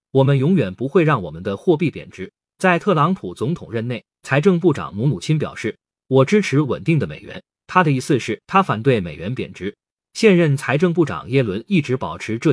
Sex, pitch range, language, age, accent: male, 130-180 Hz, Chinese, 20-39, native